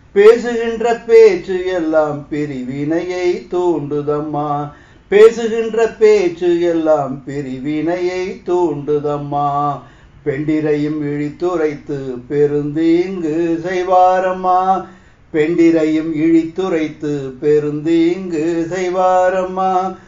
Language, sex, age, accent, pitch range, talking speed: Tamil, male, 60-79, native, 145-185 Hz, 60 wpm